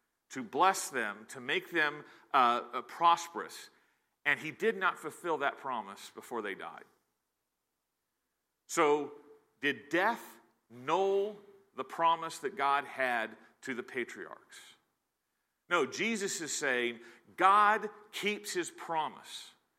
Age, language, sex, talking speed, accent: 40-59, English, male, 115 wpm, American